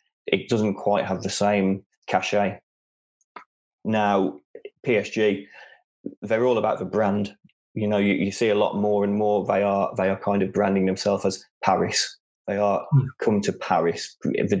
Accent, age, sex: British, 20-39, male